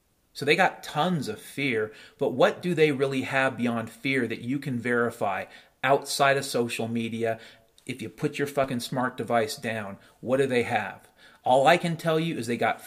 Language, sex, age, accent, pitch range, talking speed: English, male, 40-59, American, 115-140 Hz, 195 wpm